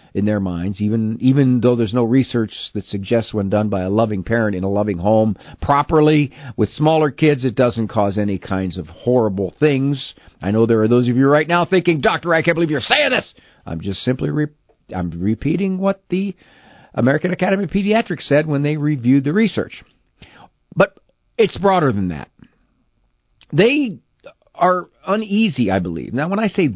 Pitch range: 110-170 Hz